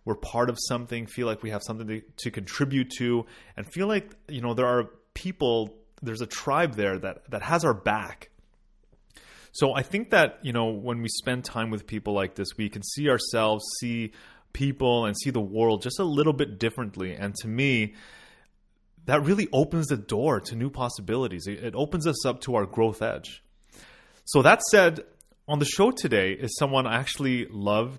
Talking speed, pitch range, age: 195 wpm, 105-135 Hz, 30-49